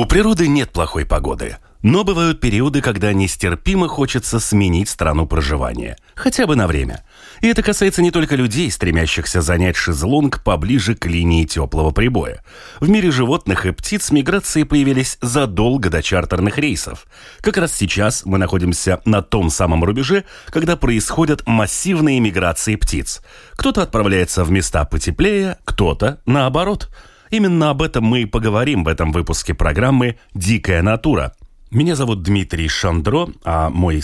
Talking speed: 145 wpm